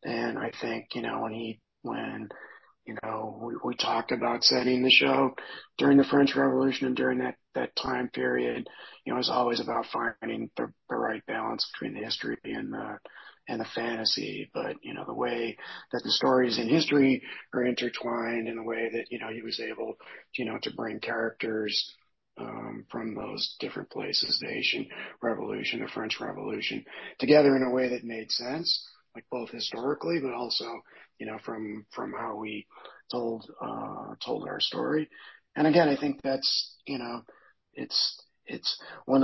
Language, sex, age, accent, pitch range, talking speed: English, male, 40-59, American, 115-145 Hz, 175 wpm